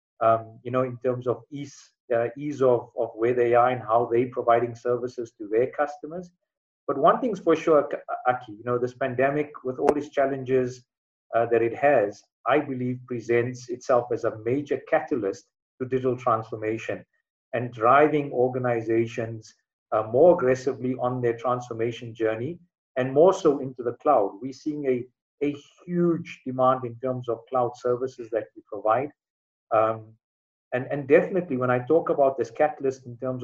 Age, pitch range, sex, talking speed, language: 50-69, 120-140 Hz, male, 165 wpm, English